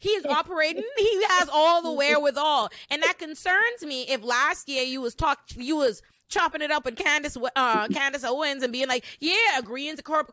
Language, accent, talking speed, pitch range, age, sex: English, American, 205 wpm, 245-320 Hz, 30-49, female